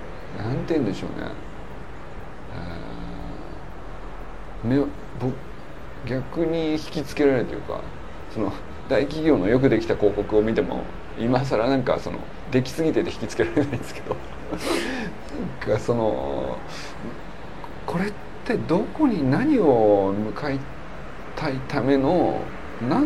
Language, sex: Japanese, male